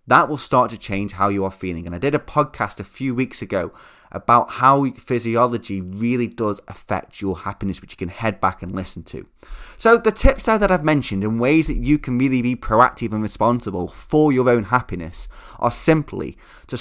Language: English